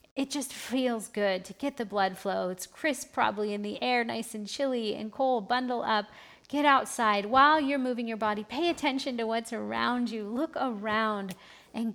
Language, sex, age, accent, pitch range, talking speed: English, female, 40-59, American, 205-255 Hz, 190 wpm